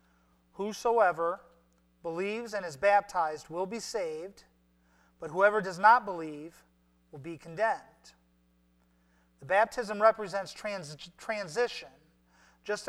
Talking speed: 100 wpm